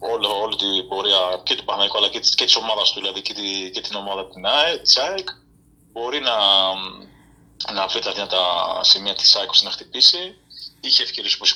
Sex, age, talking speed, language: male, 30-49, 180 wpm, Greek